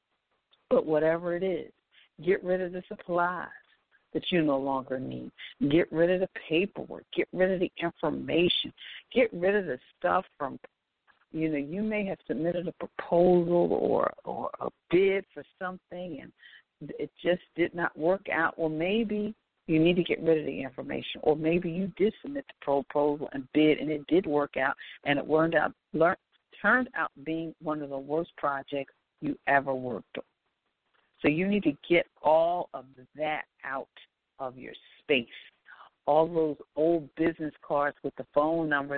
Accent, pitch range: American, 145-180 Hz